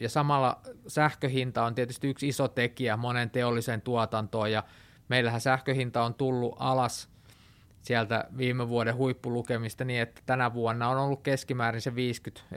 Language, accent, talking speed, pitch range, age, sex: Finnish, native, 145 wpm, 110-130 Hz, 20-39, male